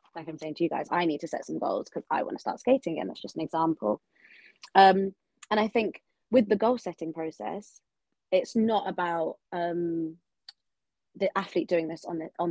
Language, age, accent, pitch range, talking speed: English, 20-39, British, 170-205 Hz, 205 wpm